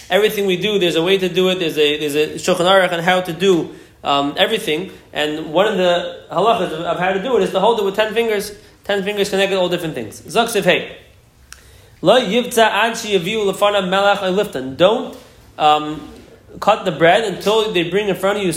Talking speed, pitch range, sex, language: 190 wpm, 170-205 Hz, male, English